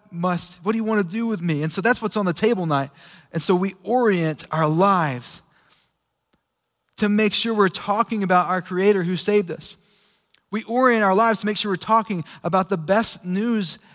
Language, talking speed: English, 220 wpm